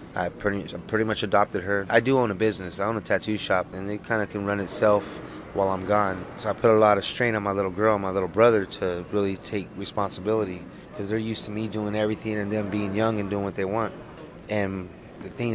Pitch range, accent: 95-110 Hz, American